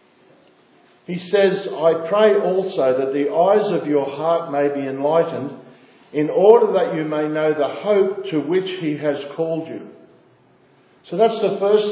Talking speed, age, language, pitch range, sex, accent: 160 wpm, 50-69, English, 165-210 Hz, male, Australian